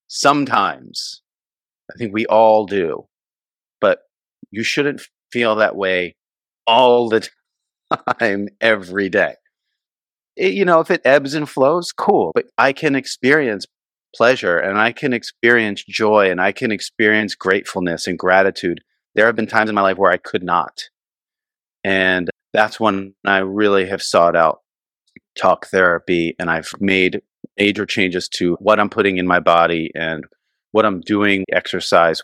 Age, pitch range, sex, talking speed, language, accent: 40-59, 90-115 Hz, male, 150 wpm, English, American